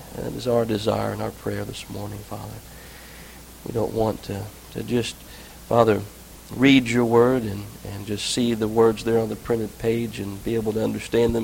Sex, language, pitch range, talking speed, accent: male, English, 105-130 Hz, 195 wpm, American